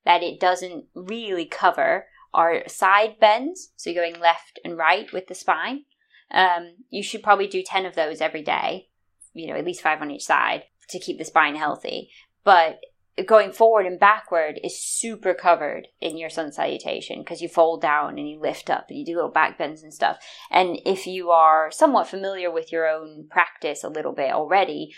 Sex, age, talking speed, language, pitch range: female, 20-39, 195 wpm, English, 160-195 Hz